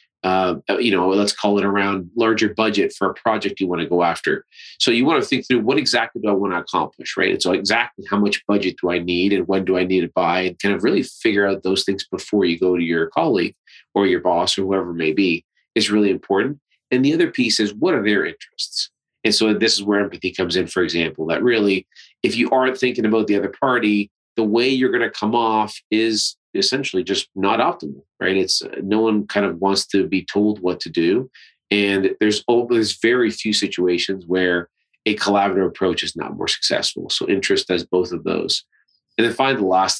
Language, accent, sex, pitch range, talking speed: English, American, male, 95-110 Hz, 225 wpm